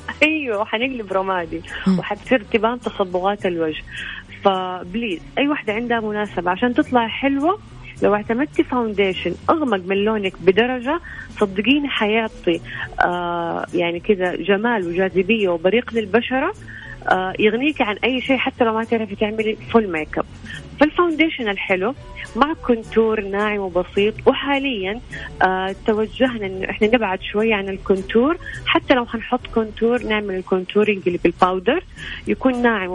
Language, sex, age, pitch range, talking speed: Arabic, female, 30-49, 185-235 Hz, 125 wpm